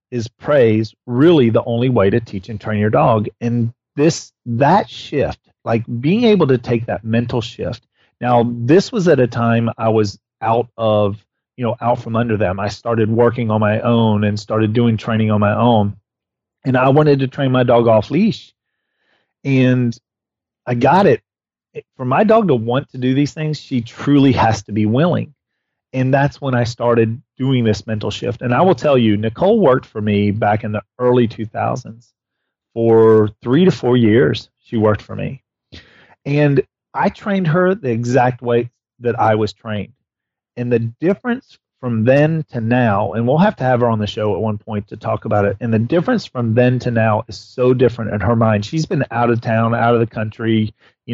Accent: American